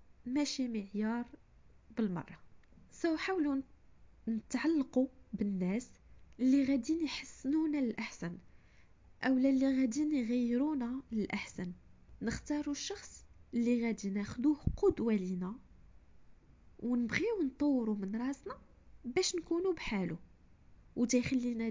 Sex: female